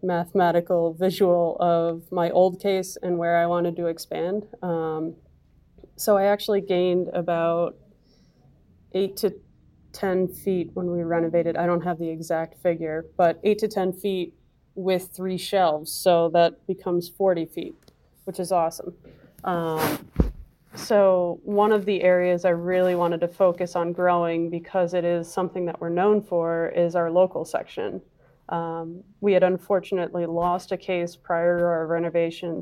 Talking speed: 155 wpm